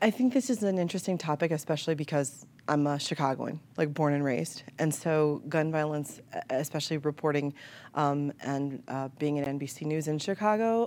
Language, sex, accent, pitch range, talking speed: English, female, American, 145-175 Hz, 170 wpm